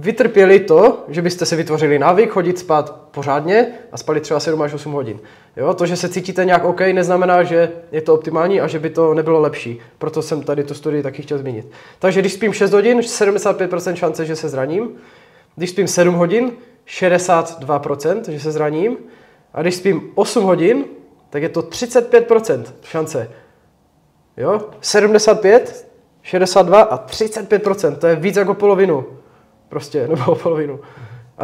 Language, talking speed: Czech, 160 wpm